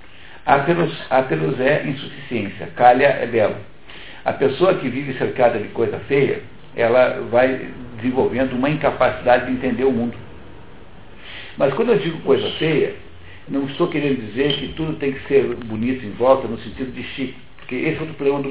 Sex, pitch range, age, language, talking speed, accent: male, 120-140 Hz, 60-79, Portuguese, 165 wpm, Brazilian